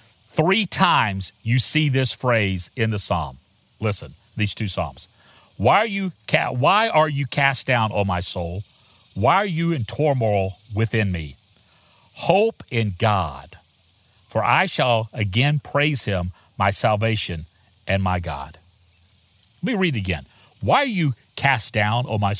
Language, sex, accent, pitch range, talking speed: English, male, American, 95-125 Hz, 155 wpm